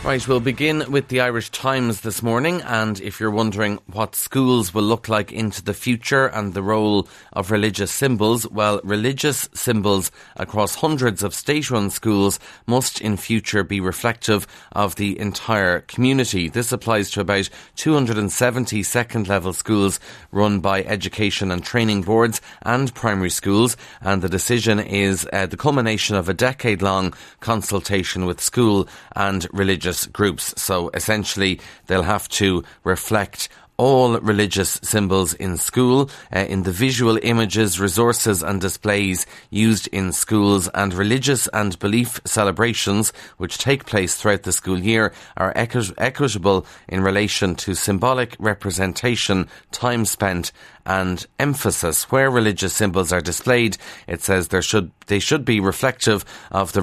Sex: male